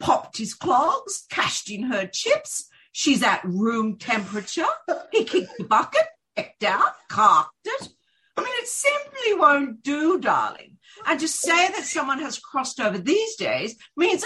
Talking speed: 155 wpm